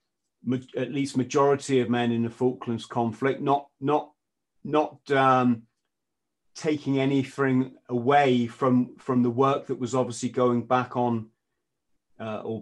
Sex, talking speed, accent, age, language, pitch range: male, 135 wpm, British, 40-59, English, 120-140 Hz